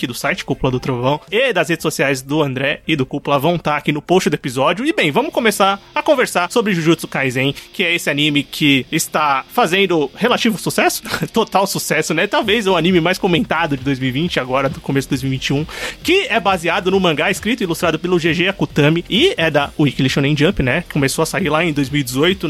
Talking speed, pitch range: 210 wpm, 145-205 Hz